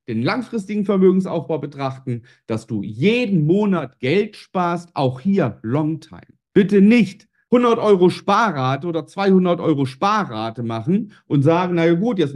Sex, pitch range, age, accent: male, 135-195 Hz, 50-69, German